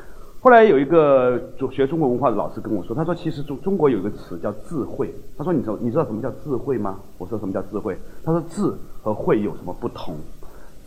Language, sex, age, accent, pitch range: Chinese, male, 30-49, native, 100-140 Hz